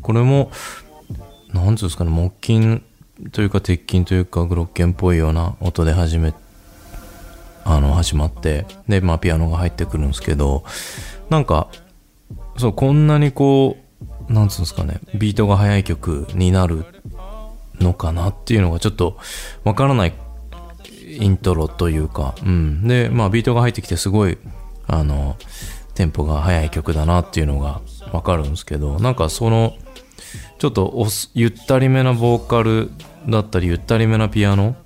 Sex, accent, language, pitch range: male, native, Japanese, 85-110 Hz